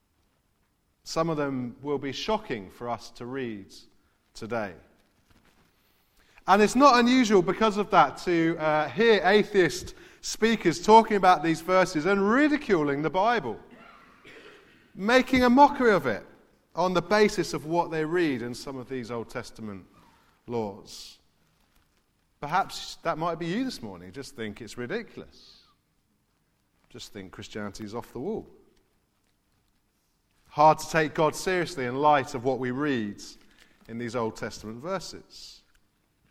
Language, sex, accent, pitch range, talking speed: English, male, British, 120-185 Hz, 140 wpm